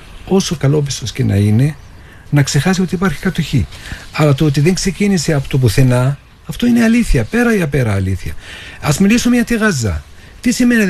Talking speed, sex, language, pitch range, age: 175 wpm, male, Greek, 95-135 Hz, 50-69